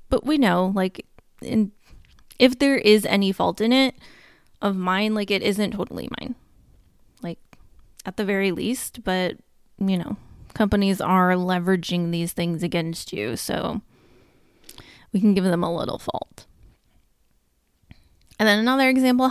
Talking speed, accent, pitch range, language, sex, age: 140 wpm, American, 185-235 Hz, English, female, 20-39